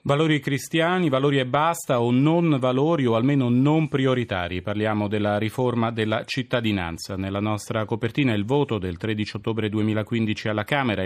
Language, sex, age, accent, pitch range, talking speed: Italian, male, 30-49, native, 105-130 Hz, 150 wpm